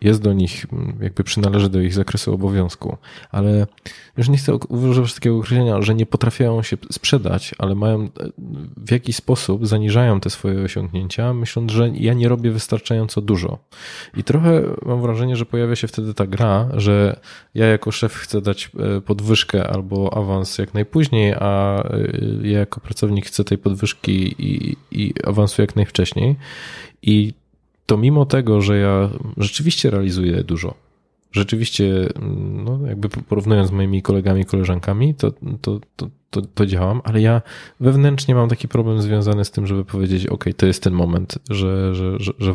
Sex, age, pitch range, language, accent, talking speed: male, 20-39, 95-120 Hz, Polish, native, 155 wpm